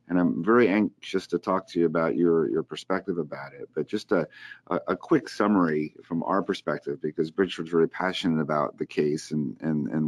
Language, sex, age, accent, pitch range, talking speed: English, male, 40-59, American, 85-105 Hz, 195 wpm